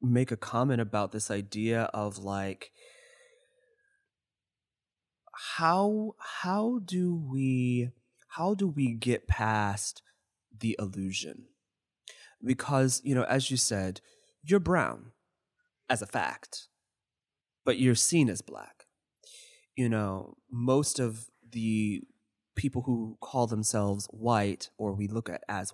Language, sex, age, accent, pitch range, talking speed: English, male, 20-39, American, 105-150 Hz, 115 wpm